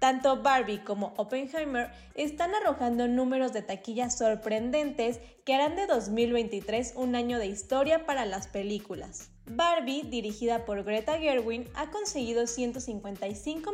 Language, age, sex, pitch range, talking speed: Spanish, 10-29, female, 215-280 Hz, 125 wpm